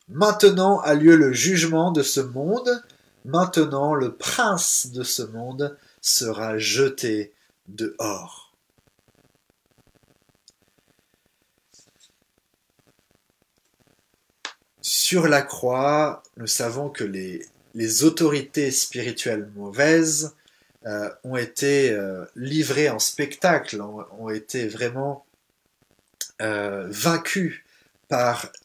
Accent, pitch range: French, 110-160 Hz